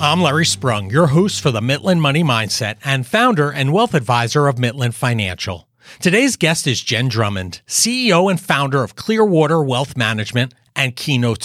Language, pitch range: English, 125-180 Hz